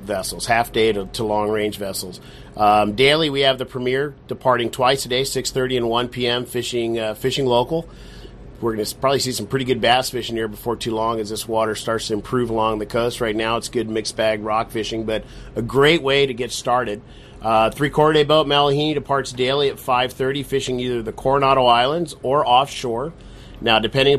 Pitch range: 115-135 Hz